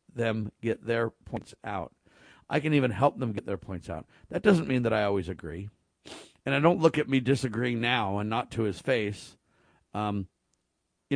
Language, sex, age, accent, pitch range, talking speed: English, male, 50-69, American, 100-130 Hz, 195 wpm